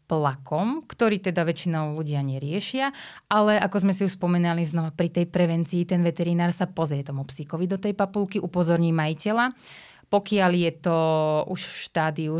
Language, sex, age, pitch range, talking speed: Slovak, female, 30-49, 155-180 Hz, 160 wpm